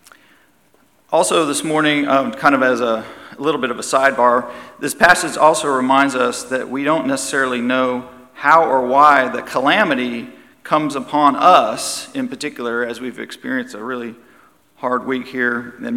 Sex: male